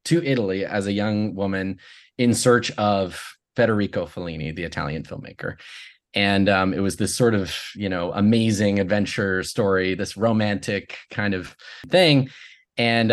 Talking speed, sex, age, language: 145 wpm, male, 20-39, English